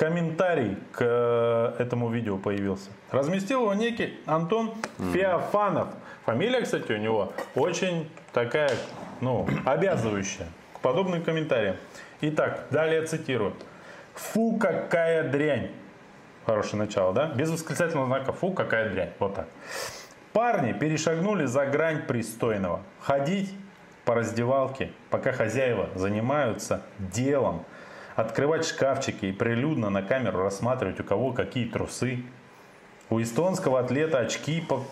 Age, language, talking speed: 20-39, Russian, 110 wpm